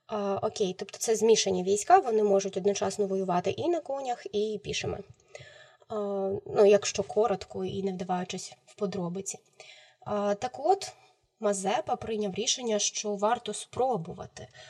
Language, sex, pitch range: Ukrainian, female, 195-215 Hz